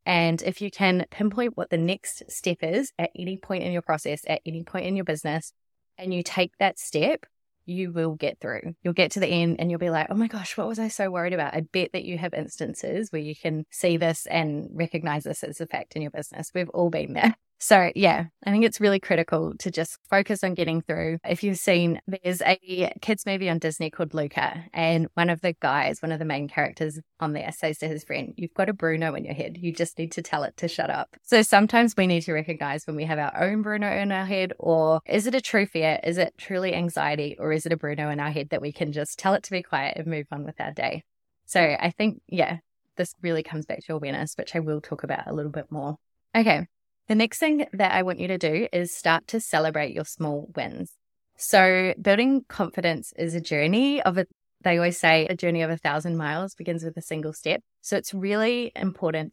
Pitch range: 155-190 Hz